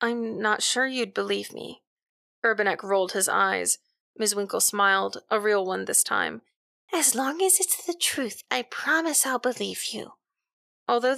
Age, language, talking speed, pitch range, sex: 20-39, English, 160 wpm, 195-240 Hz, female